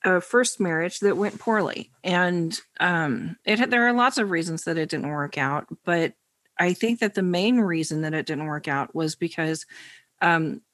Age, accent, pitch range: 40-59, American, 170-225 Hz